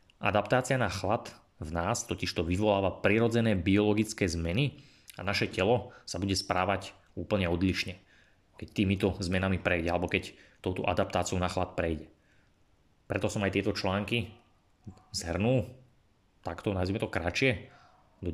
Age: 20-39